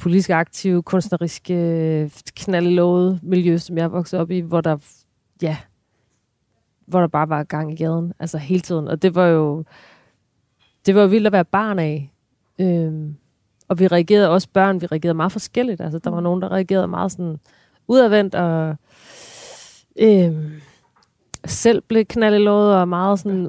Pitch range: 155-190 Hz